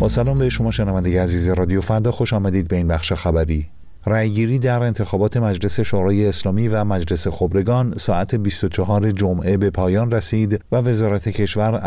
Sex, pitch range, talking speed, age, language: male, 95-115 Hz, 160 wpm, 50-69, Persian